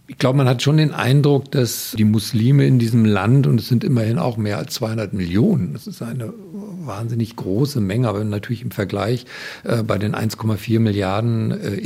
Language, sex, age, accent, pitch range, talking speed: German, male, 50-69, German, 105-130 Hz, 190 wpm